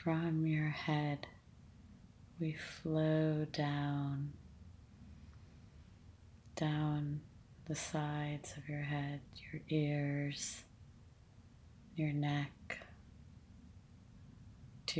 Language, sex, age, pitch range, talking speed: English, female, 30-49, 100-145 Hz, 70 wpm